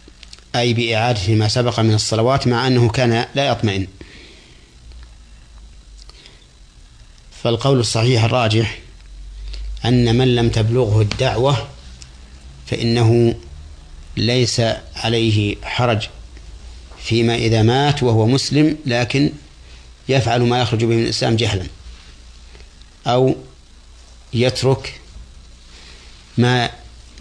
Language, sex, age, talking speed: Arabic, male, 50-69, 85 wpm